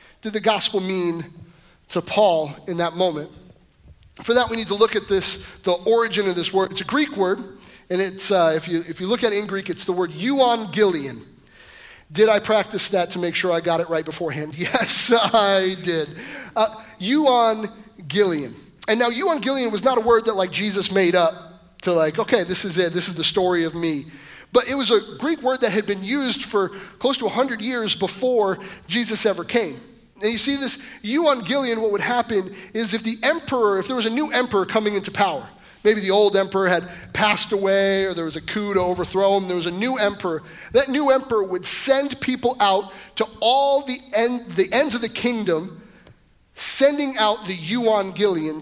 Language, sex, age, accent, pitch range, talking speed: English, male, 30-49, American, 185-245 Hz, 200 wpm